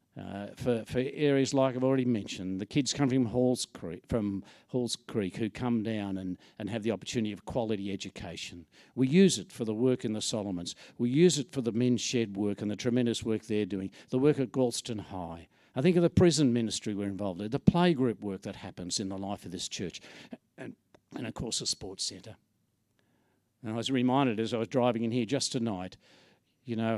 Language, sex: English, male